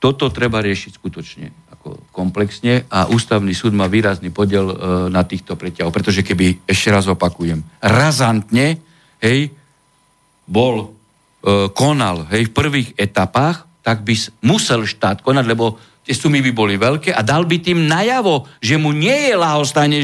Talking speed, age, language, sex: 145 wpm, 50-69, Slovak, male